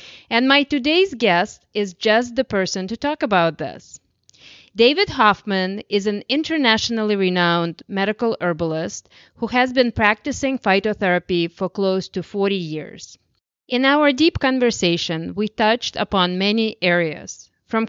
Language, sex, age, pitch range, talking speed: English, female, 30-49, 180-235 Hz, 135 wpm